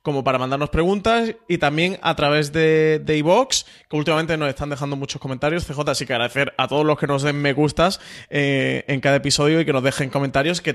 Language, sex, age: Spanish, male, 20-39